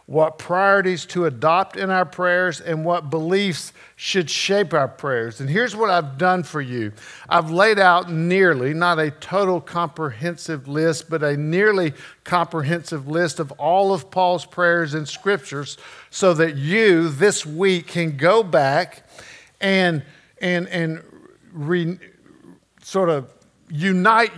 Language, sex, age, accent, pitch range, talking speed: English, male, 50-69, American, 155-190 Hz, 140 wpm